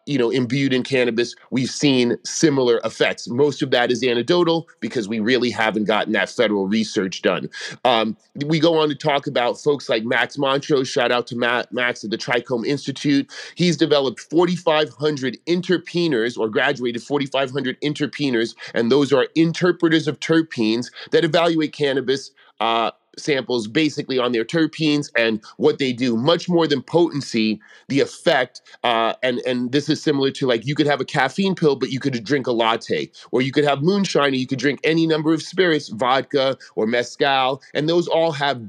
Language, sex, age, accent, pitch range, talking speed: English, male, 30-49, American, 125-155 Hz, 175 wpm